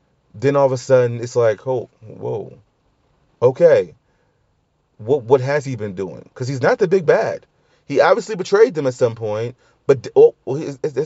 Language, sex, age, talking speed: English, male, 30-49, 170 wpm